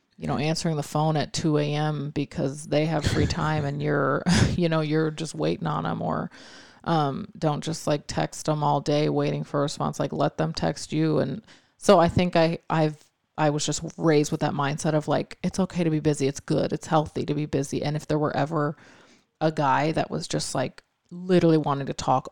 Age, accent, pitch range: 30-49, American, 150-165 Hz